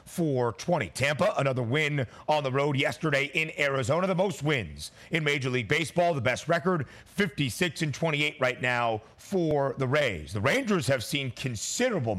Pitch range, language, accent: 135-175 Hz, English, American